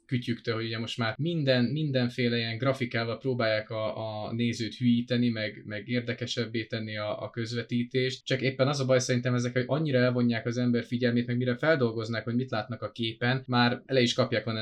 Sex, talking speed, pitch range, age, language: male, 190 wpm, 110-130 Hz, 20-39, Hungarian